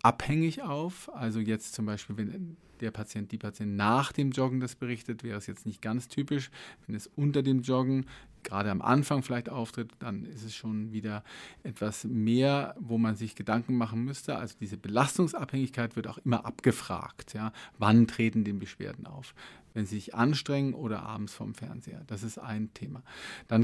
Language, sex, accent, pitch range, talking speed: German, male, German, 110-130 Hz, 180 wpm